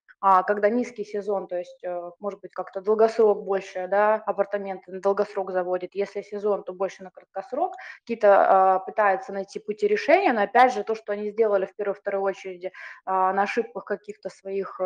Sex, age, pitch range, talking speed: female, 20-39, 190-225 Hz, 180 wpm